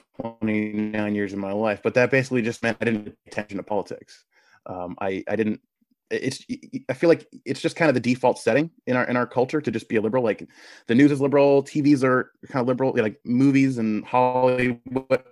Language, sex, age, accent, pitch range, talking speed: English, male, 20-39, American, 115-140 Hz, 215 wpm